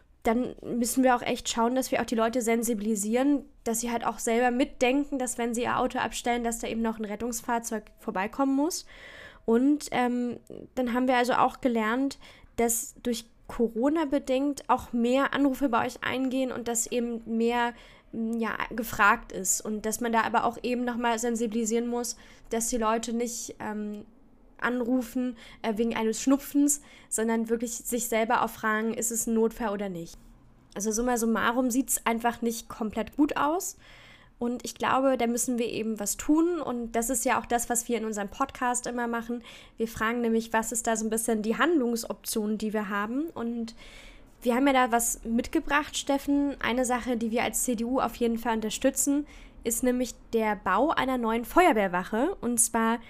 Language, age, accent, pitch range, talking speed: German, 10-29, German, 230-255 Hz, 180 wpm